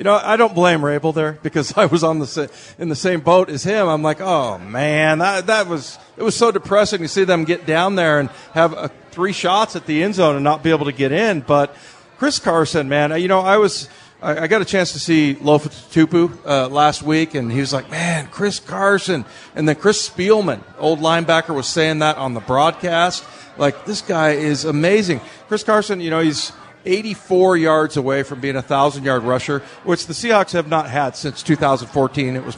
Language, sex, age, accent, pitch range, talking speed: English, male, 40-59, American, 145-180 Hz, 220 wpm